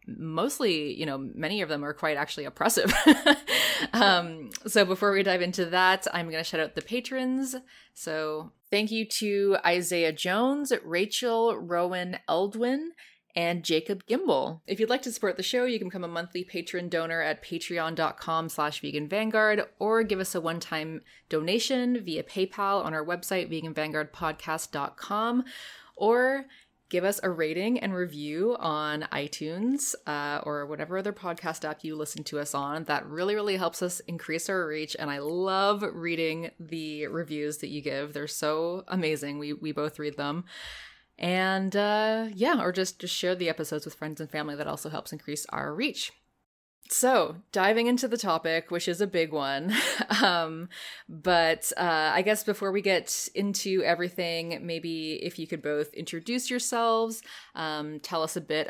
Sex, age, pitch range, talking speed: female, 20-39, 155-200 Hz, 165 wpm